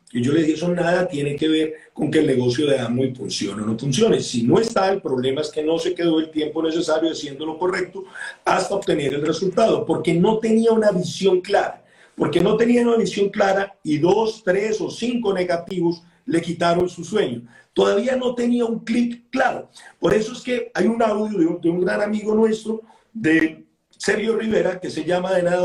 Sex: male